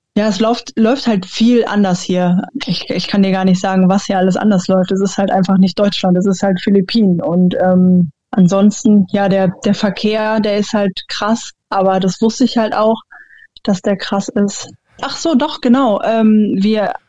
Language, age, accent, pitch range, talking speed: German, 20-39, German, 190-225 Hz, 200 wpm